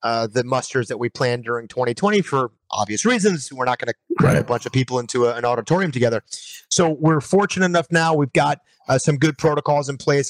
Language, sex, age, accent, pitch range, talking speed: English, male, 30-49, American, 140-170 Hz, 220 wpm